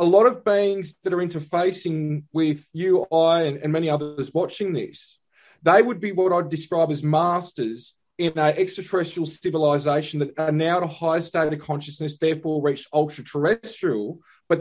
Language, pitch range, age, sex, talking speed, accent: English, 145-170 Hz, 20-39, male, 175 wpm, Australian